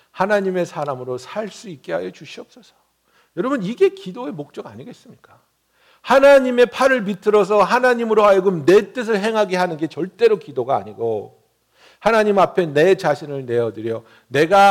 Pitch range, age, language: 145-215 Hz, 60-79, Korean